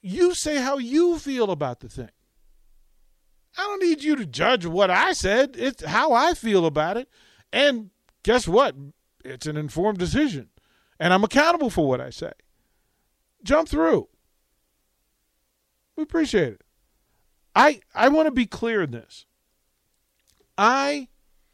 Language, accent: English, American